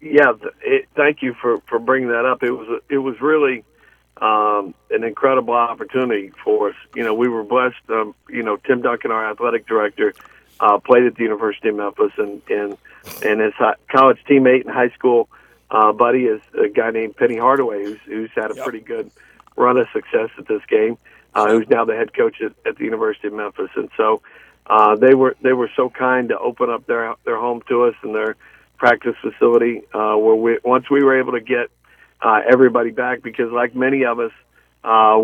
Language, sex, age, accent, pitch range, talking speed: English, male, 50-69, American, 115-135 Hz, 205 wpm